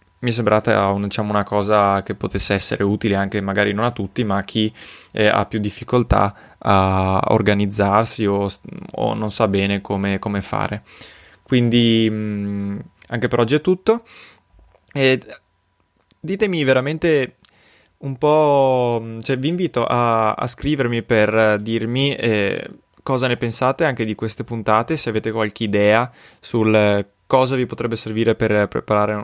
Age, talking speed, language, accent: 20-39, 140 wpm, Italian, native